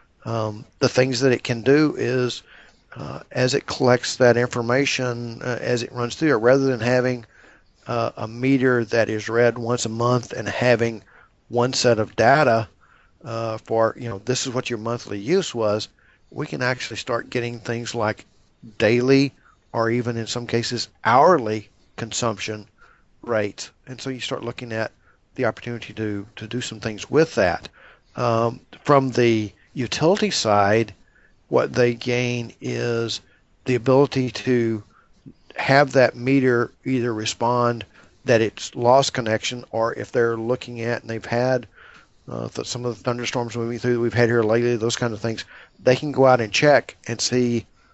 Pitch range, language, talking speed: 115-125 Hz, English, 165 wpm